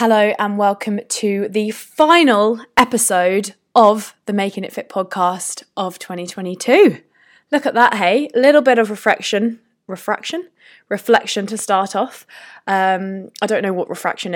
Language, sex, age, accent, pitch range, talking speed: English, female, 20-39, British, 185-250 Hz, 145 wpm